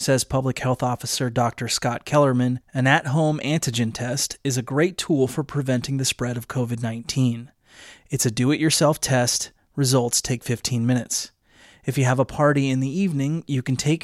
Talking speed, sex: 170 wpm, male